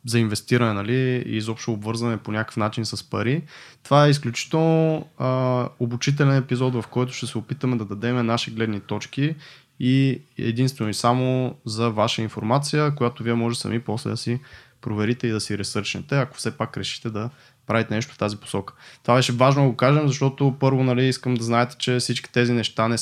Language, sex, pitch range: Bulgarian, male, 115-130 Hz